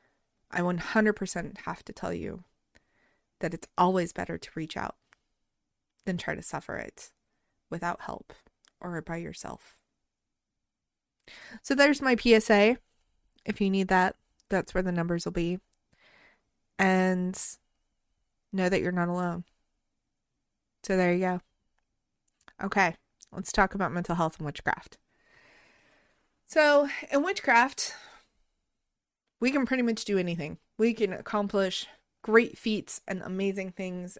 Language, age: English, 20-39